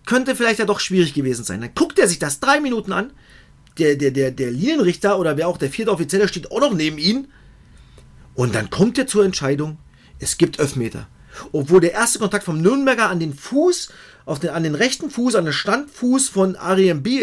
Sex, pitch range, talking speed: male, 140-200 Hz, 215 wpm